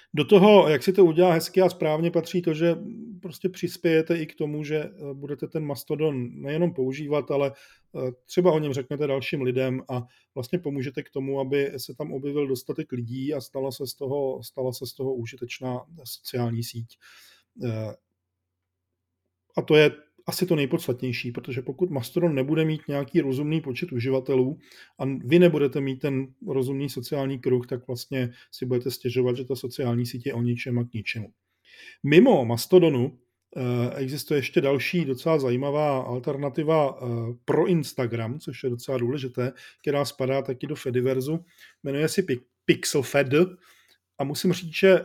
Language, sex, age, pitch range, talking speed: Czech, male, 40-59, 125-150 Hz, 155 wpm